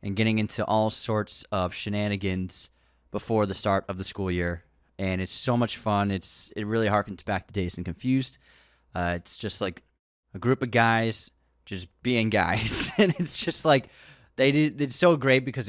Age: 20-39